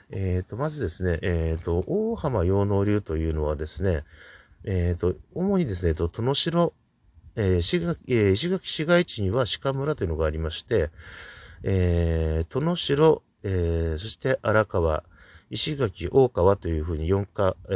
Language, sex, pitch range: Japanese, male, 85-115 Hz